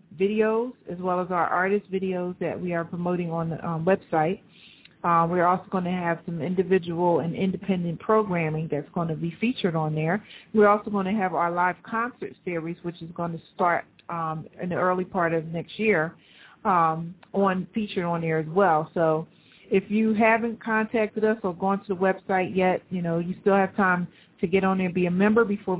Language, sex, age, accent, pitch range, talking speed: English, female, 40-59, American, 170-200 Hz, 205 wpm